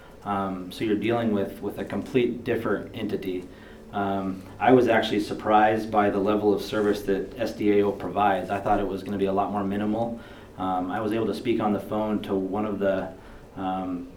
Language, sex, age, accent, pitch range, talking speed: English, male, 30-49, American, 100-110 Hz, 205 wpm